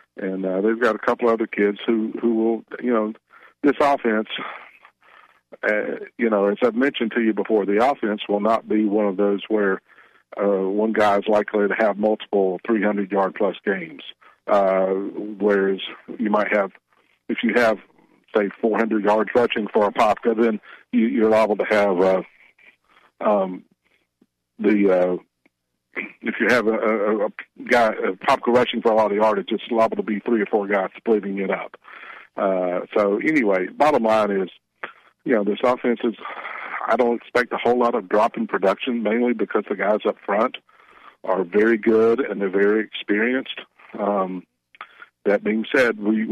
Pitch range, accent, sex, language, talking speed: 100-115 Hz, American, male, English, 170 wpm